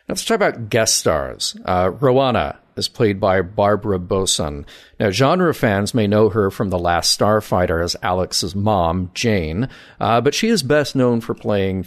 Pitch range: 95-125 Hz